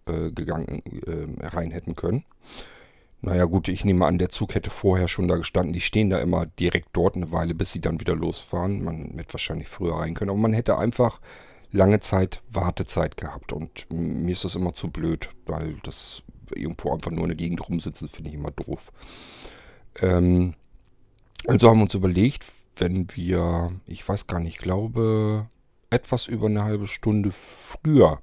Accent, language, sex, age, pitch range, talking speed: German, German, male, 40-59, 85-110 Hz, 175 wpm